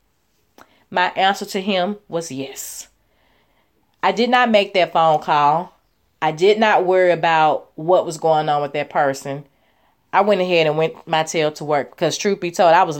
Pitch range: 165-235 Hz